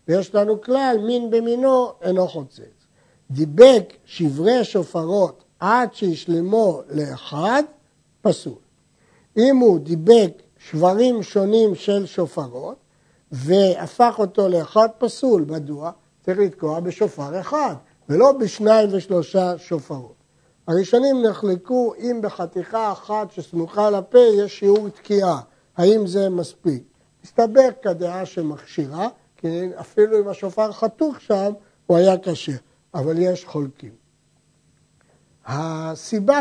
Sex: male